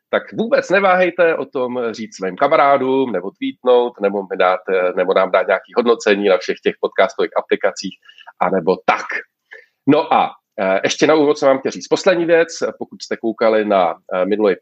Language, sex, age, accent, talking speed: Czech, male, 40-59, native, 165 wpm